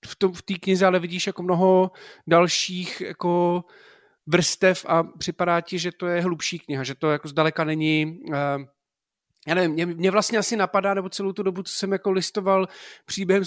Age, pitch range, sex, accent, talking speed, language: 40-59, 170-195 Hz, male, native, 170 wpm, Czech